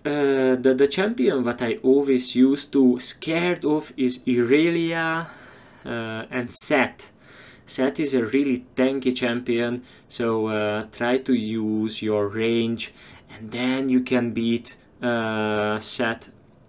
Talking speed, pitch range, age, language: 130 wpm, 110-125 Hz, 20-39, English